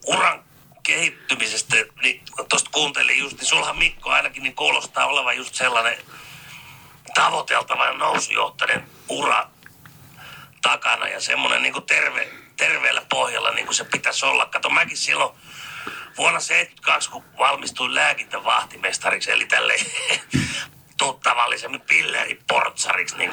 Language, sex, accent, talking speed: Finnish, male, native, 120 wpm